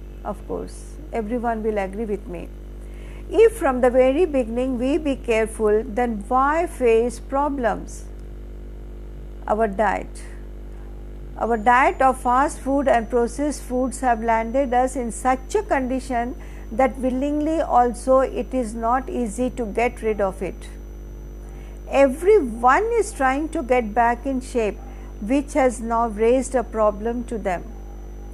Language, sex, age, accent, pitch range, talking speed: Hindi, female, 50-69, native, 225-260 Hz, 135 wpm